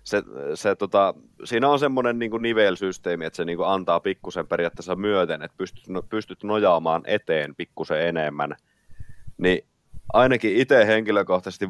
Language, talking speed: Finnish, 135 wpm